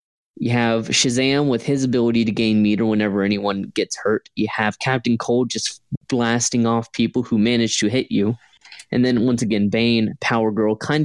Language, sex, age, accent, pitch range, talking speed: English, male, 20-39, American, 110-130 Hz, 185 wpm